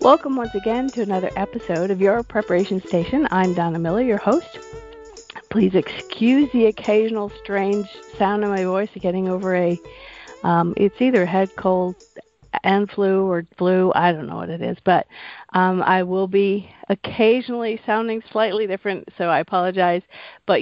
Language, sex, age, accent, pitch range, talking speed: English, female, 40-59, American, 185-240 Hz, 165 wpm